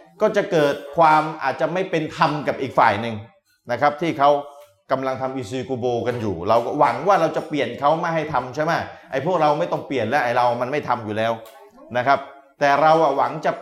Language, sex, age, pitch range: Thai, male, 20-39, 140-175 Hz